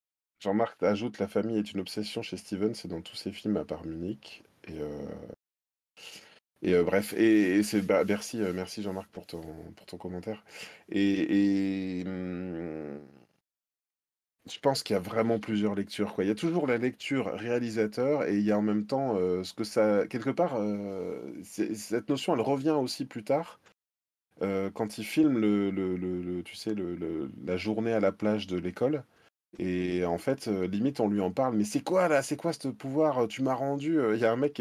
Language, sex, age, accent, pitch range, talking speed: French, male, 20-39, French, 90-125 Hz, 205 wpm